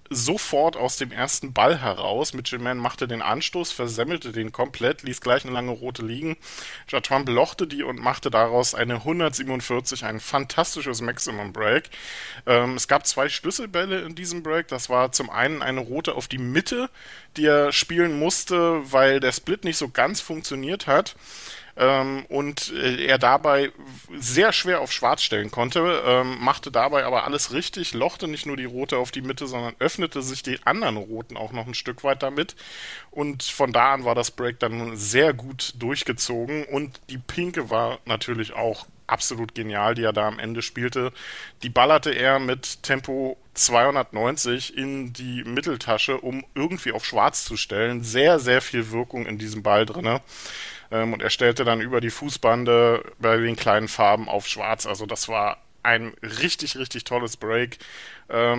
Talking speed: 165 wpm